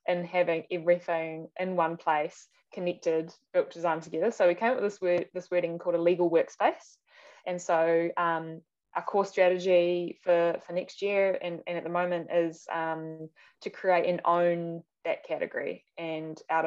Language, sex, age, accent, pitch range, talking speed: English, female, 10-29, Australian, 165-180 Hz, 175 wpm